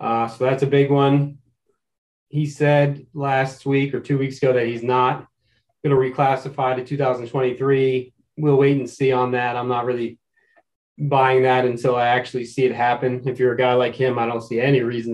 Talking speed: 200 wpm